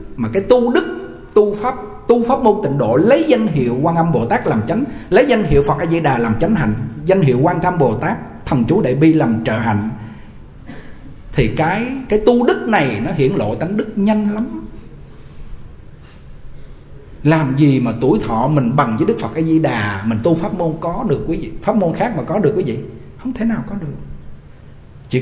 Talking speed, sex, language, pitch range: 215 wpm, male, Vietnamese, 135-210 Hz